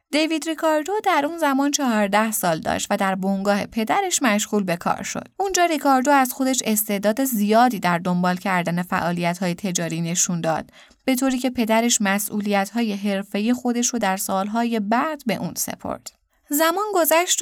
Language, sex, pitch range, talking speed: Persian, female, 195-270 Hz, 155 wpm